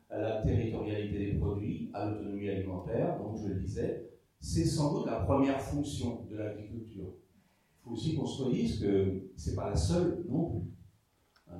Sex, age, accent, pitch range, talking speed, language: male, 40-59, French, 100-135 Hz, 175 wpm, French